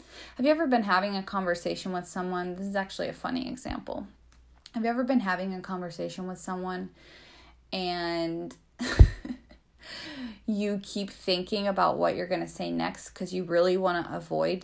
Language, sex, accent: English, female, American